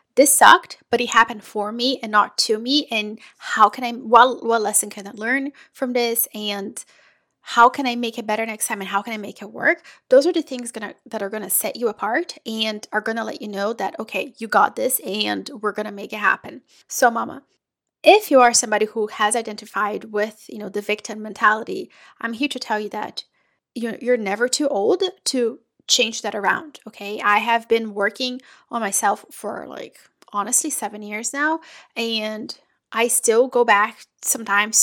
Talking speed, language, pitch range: 205 wpm, English, 210-255 Hz